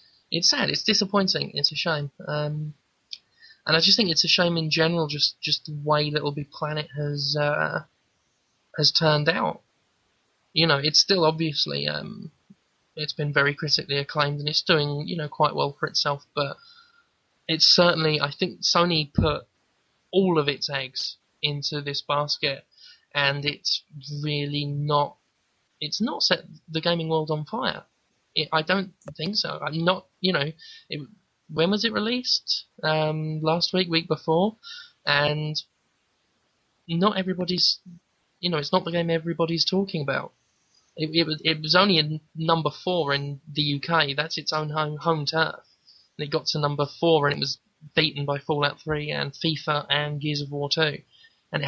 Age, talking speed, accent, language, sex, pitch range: 20-39, 170 wpm, British, English, male, 145-170 Hz